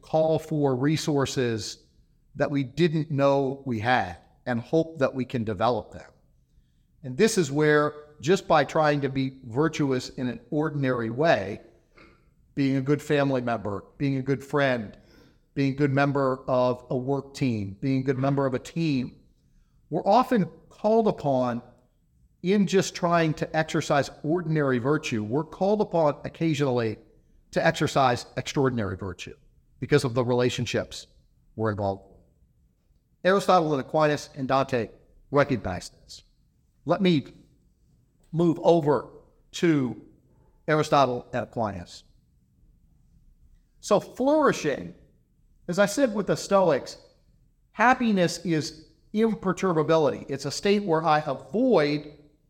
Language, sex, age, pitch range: English, male, 50-69, 130-165 Hz